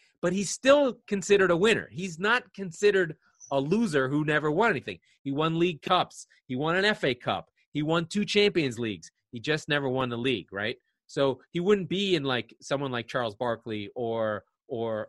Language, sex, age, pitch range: English, male, 30-49, 120-165 Hz